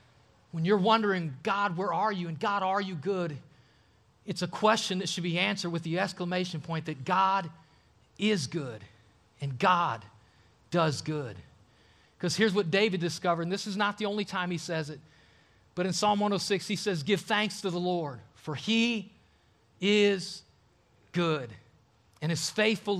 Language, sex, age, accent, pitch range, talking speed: English, male, 40-59, American, 145-205 Hz, 165 wpm